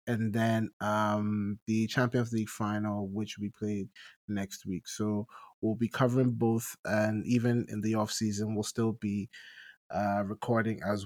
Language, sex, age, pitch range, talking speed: English, male, 20-39, 105-130 Hz, 155 wpm